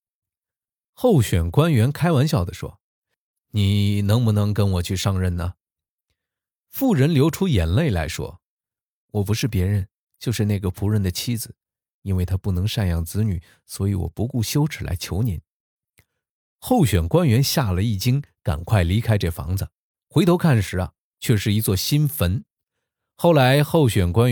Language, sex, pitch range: Chinese, male, 90-120 Hz